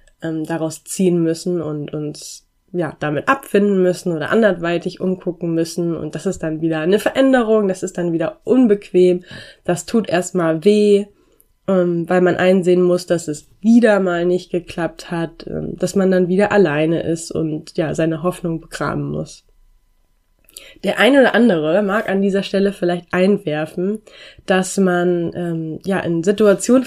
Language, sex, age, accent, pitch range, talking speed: German, female, 20-39, German, 170-200 Hz, 150 wpm